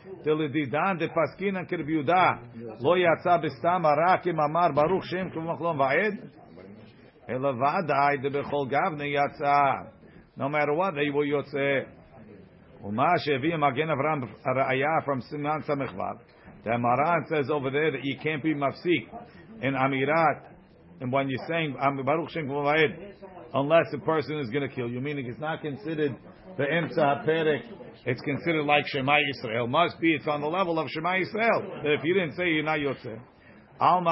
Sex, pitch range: male, 140-170 Hz